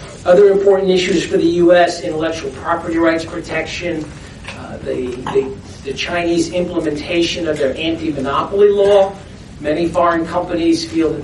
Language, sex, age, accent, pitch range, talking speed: English, male, 40-59, American, 145-180 Hz, 135 wpm